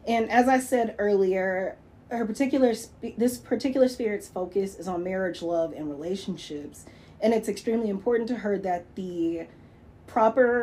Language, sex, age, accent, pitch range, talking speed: English, female, 30-49, American, 175-215 Hz, 150 wpm